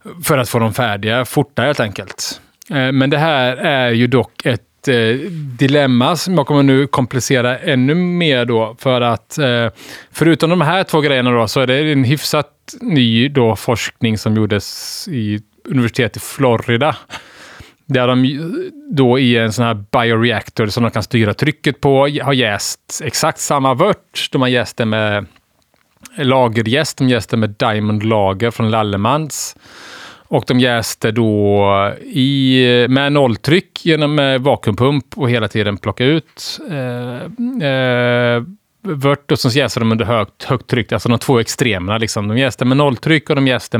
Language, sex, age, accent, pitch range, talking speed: Swedish, male, 30-49, Norwegian, 110-140 Hz, 160 wpm